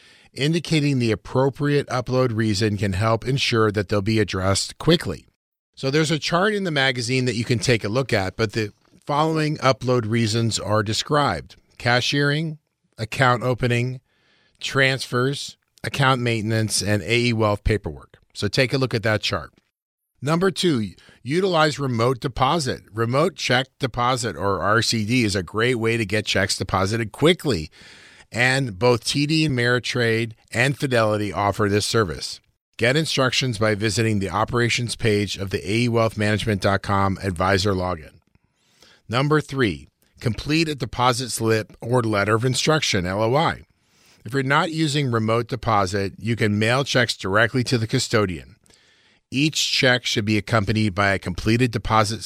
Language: English